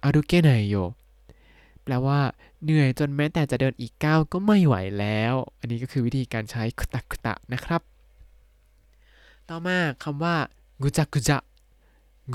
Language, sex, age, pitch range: Thai, male, 20-39, 115-150 Hz